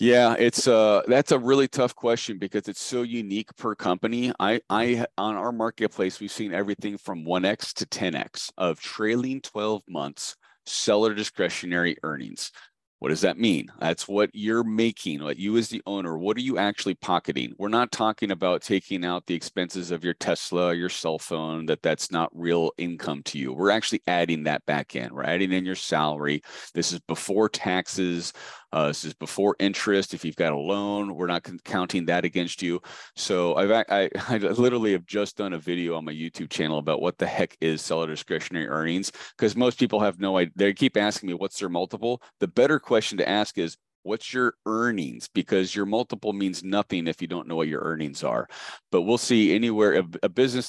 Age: 30-49